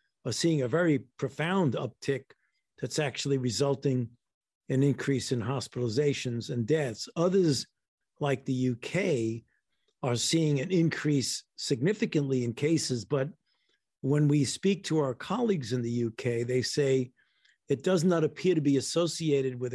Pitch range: 130-165 Hz